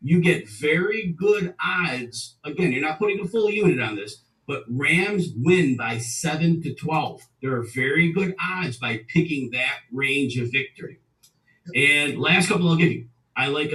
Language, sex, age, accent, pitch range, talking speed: English, male, 40-59, American, 130-170 Hz, 175 wpm